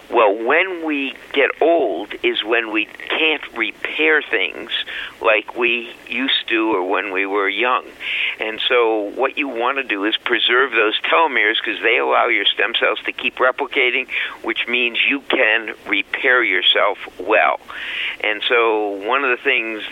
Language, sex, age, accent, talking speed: English, male, 50-69, American, 160 wpm